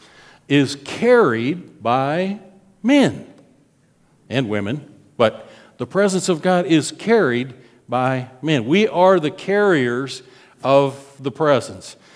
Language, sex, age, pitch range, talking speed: English, male, 50-69, 135-185 Hz, 110 wpm